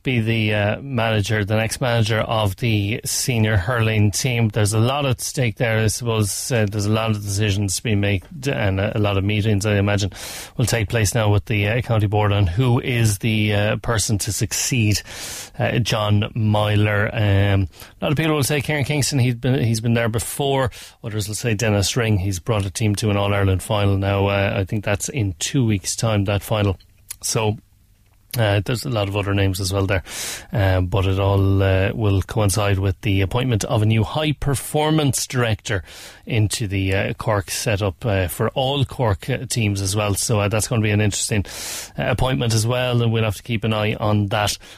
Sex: male